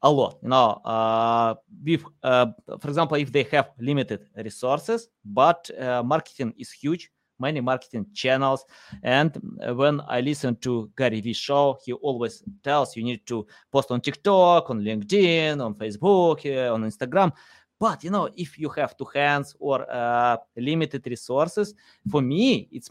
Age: 20-39